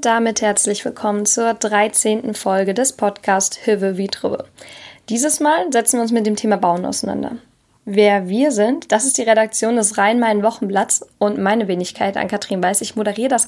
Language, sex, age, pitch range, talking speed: German, female, 10-29, 195-230 Hz, 175 wpm